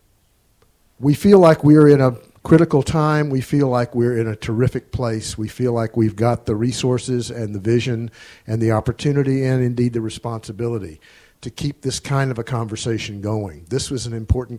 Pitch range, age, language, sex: 110-130 Hz, 50-69, English, male